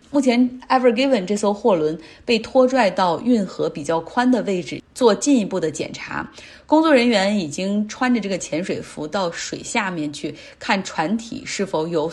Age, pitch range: 30-49, 170-240 Hz